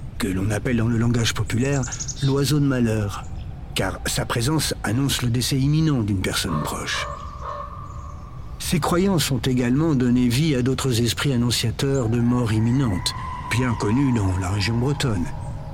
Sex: male